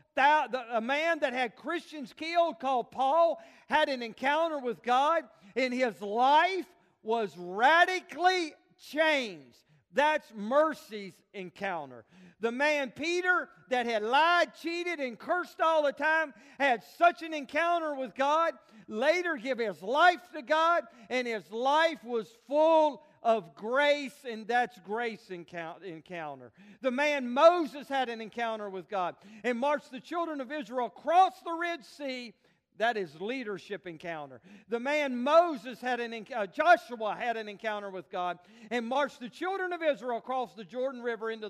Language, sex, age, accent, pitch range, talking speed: English, male, 50-69, American, 210-310 Hz, 150 wpm